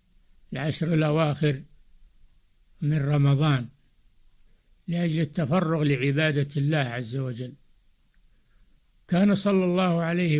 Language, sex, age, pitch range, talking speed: Arabic, male, 60-79, 140-175 Hz, 80 wpm